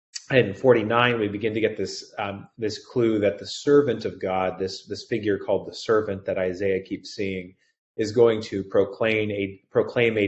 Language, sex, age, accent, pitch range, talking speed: English, male, 30-49, American, 95-110 Hz, 185 wpm